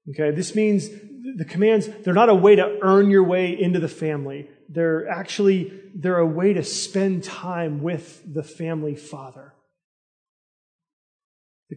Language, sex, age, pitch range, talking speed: English, male, 30-49, 155-205 Hz, 150 wpm